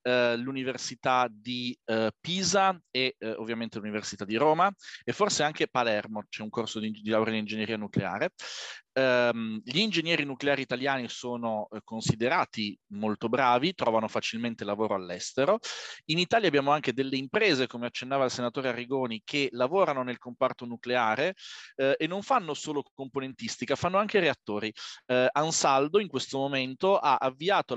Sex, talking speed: male, 150 wpm